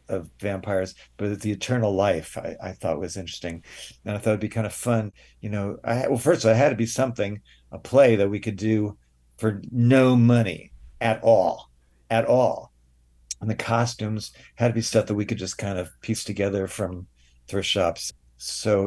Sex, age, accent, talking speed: male, 50-69, American, 200 wpm